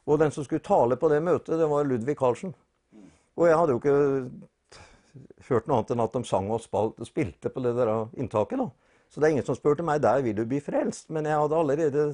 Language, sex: English, male